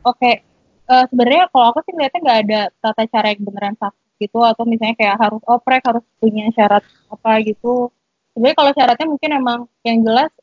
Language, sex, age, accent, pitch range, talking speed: Indonesian, female, 20-39, native, 210-250 Hz, 190 wpm